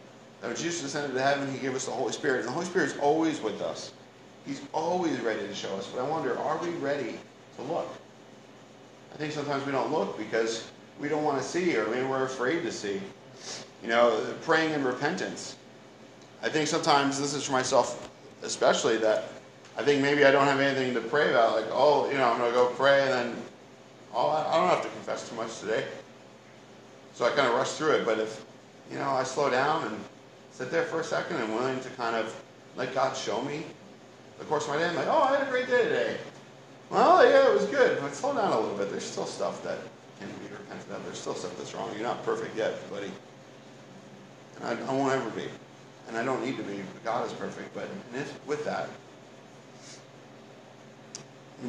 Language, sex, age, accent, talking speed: English, male, 40-59, American, 220 wpm